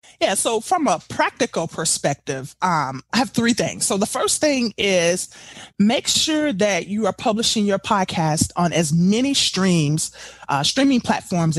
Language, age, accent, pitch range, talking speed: English, 30-49, American, 170-215 Hz, 160 wpm